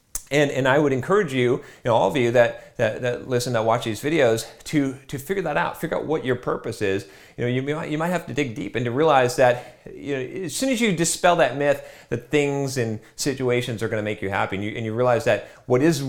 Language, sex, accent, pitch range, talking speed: English, male, American, 115-150 Hz, 260 wpm